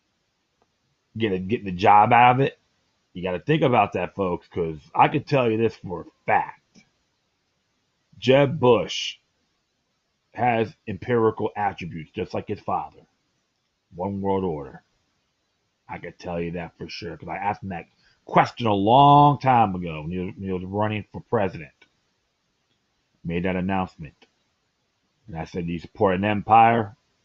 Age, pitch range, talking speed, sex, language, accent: 30-49, 95-125 Hz, 160 wpm, male, English, American